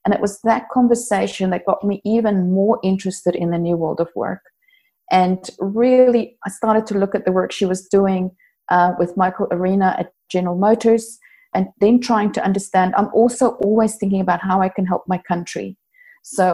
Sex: female